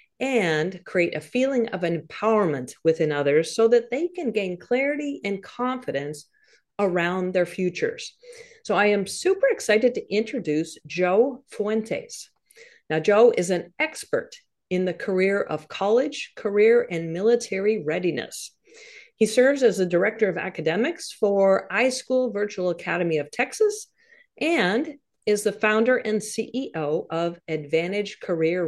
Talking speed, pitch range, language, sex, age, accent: 135 wpm, 180-265 Hz, English, female, 50-69, American